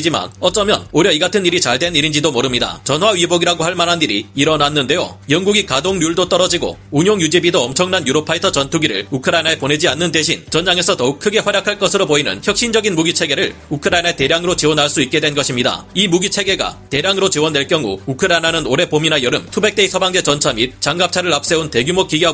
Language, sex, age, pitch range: Korean, male, 30-49, 145-185 Hz